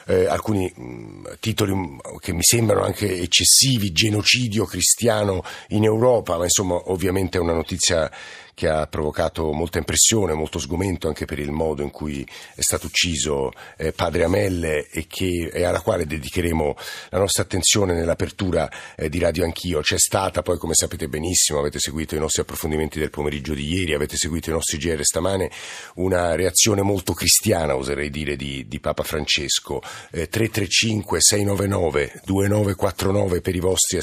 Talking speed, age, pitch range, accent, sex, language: 155 wpm, 50-69, 80-100 Hz, native, male, Italian